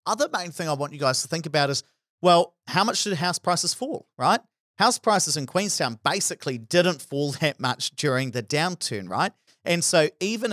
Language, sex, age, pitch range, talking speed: English, male, 40-59, 125-165 Hz, 200 wpm